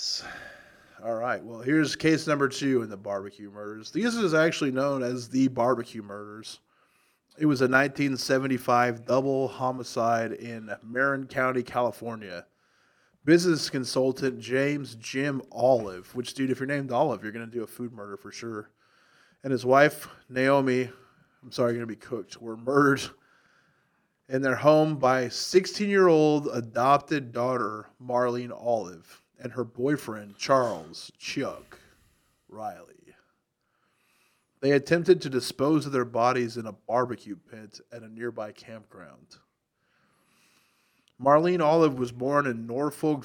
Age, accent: 20-39, American